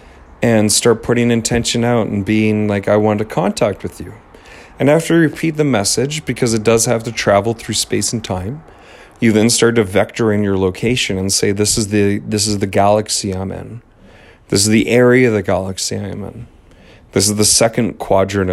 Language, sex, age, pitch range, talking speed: English, male, 40-59, 100-120 Hz, 200 wpm